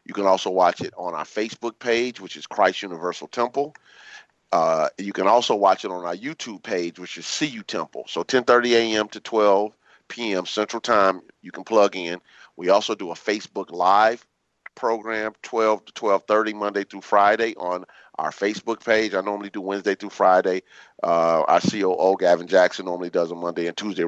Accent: American